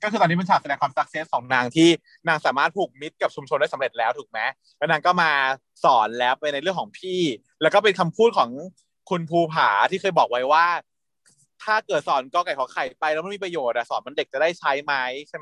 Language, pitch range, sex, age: Thai, 145-190 Hz, male, 20-39